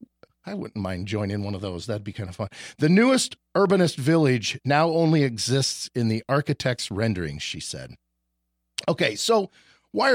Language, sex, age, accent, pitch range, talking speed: English, male, 40-59, American, 115-150 Hz, 165 wpm